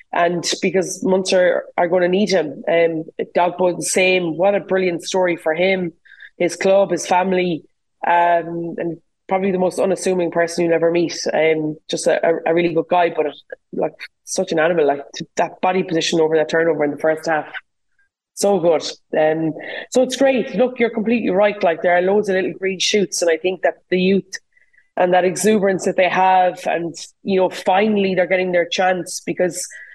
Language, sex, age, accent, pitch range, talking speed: English, female, 20-39, Irish, 175-205 Hz, 190 wpm